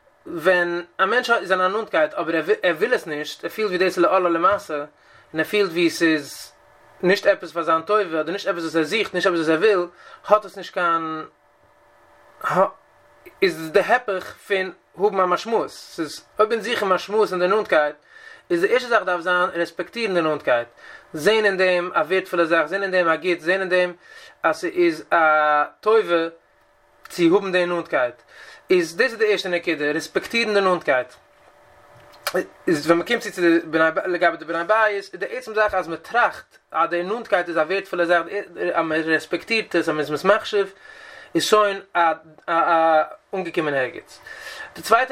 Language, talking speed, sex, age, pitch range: English, 120 wpm, male, 30-49, 170-215 Hz